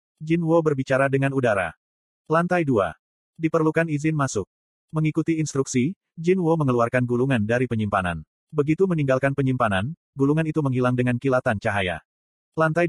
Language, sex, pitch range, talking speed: Indonesian, male, 120-155 Hz, 130 wpm